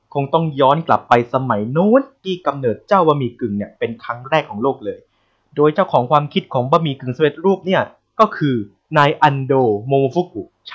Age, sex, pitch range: 20-39, male, 125-175 Hz